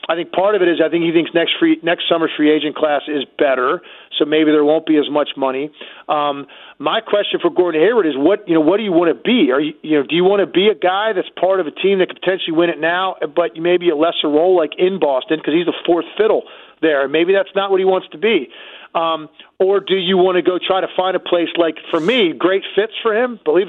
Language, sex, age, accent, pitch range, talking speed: English, male, 40-59, American, 150-190 Hz, 270 wpm